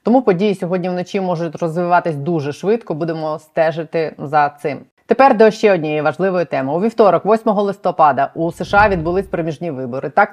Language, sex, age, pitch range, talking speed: Ukrainian, female, 30-49, 155-185 Hz, 165 wpm